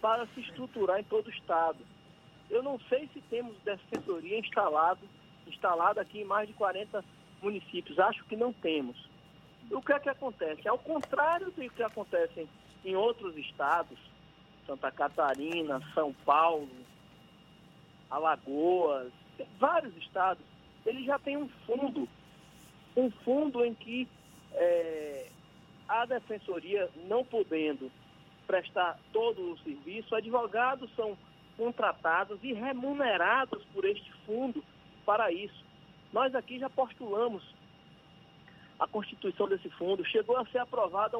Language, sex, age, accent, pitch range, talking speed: Portuguese, male, 50-69, Brazilian, 175-260 Hz, 125 wpm